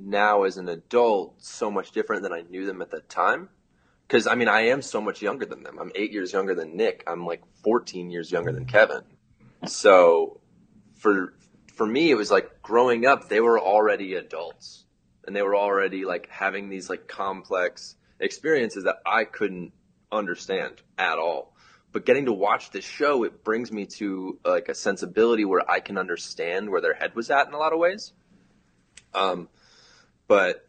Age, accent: 20-39, American